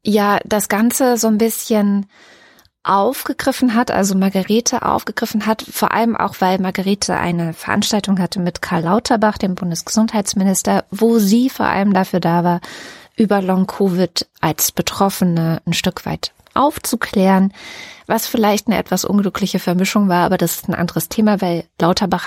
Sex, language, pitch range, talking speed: female, German, 170-210 Hz, 150 wpm